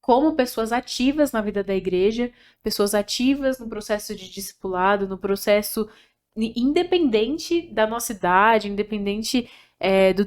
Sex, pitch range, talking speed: female, 200-230 Hz, 130 wpm